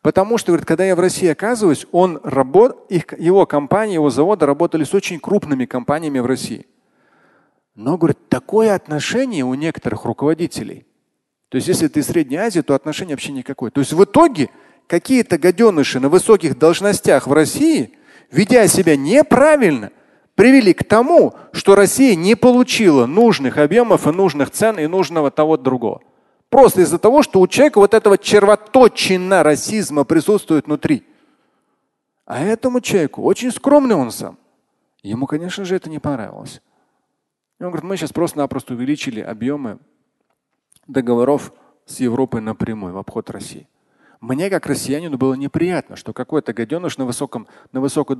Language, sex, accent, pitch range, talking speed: Russian, male, native, 140-205 Hz, 145 wpm